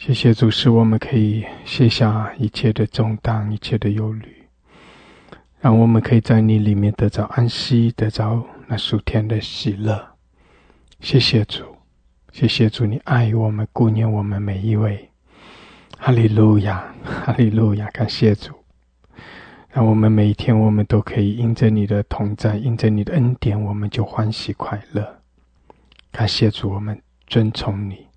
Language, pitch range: English, 90-110 Hz